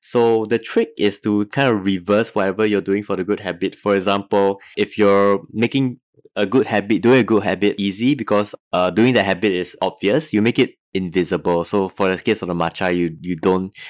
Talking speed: 210 wpm